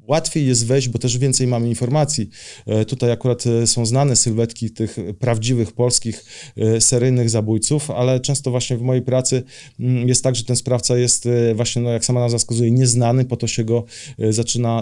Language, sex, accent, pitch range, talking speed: Polish, male, native, 115-125 Hz, 170 wpm